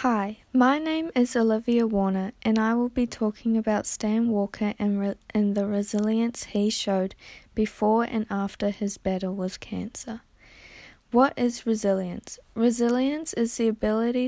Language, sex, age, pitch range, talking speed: English, female, 20-39, 200-230 Hz, 145 wpm